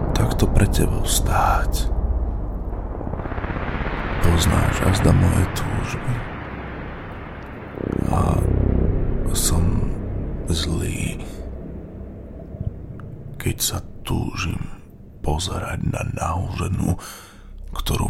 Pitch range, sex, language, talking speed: 80-100 Hz, male, Slovak, 65 wpm